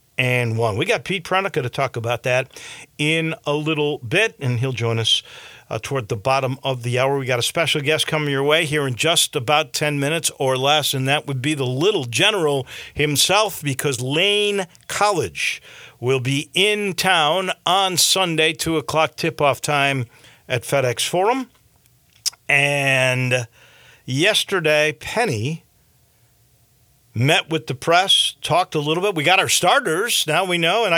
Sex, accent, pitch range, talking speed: male, American, 130-165 Hz, 165 wpm